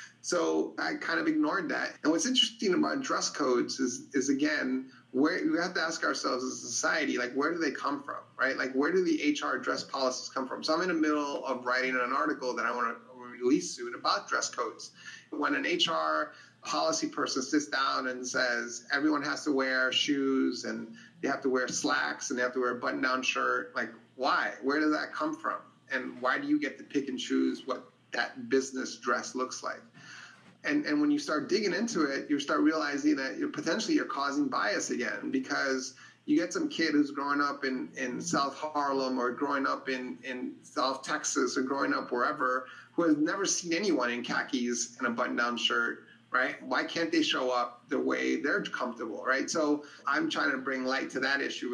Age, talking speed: 30-49, 210 wpm